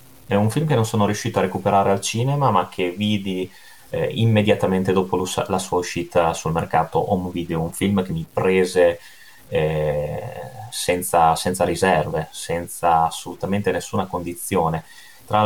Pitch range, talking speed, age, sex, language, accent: 85-110 Hz, 150 wpm, 30-49, male, Italian, native